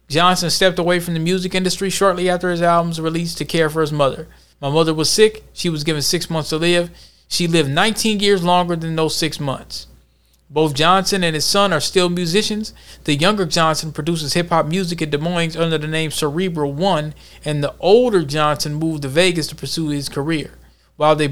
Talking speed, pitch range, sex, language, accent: 205 wpm, 145-175 Hz, male, English, American